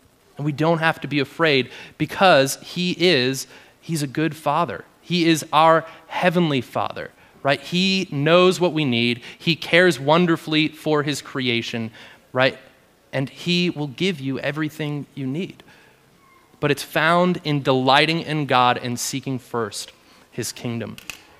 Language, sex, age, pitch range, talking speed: English, male, 30-49, 130-160 Hz, 140 wpm